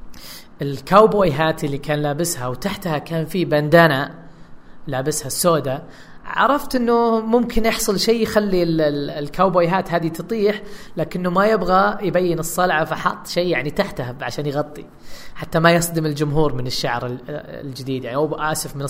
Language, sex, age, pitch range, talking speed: Arabic, female, 20-39, 150-215 Hz, 135 wpm